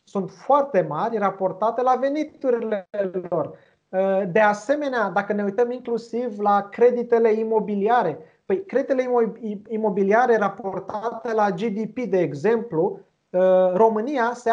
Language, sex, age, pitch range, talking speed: Romanian, male, 30-49, 190-235 Hz, 105 wpm